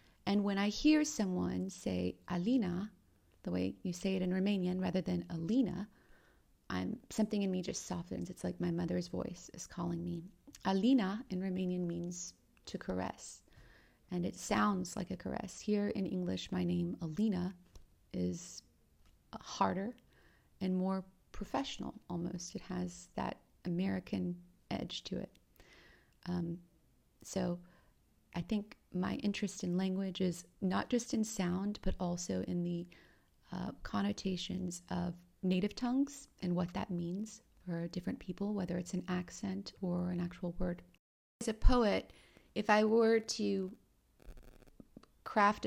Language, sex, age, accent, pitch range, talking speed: English, female, 30-49, American, 175-195 Hz, 140 wpm